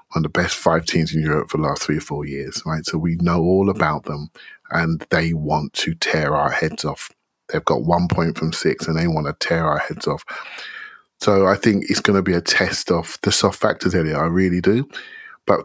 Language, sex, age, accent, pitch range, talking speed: English, male, 30-49, British, 80-95 Hz, 240 wpm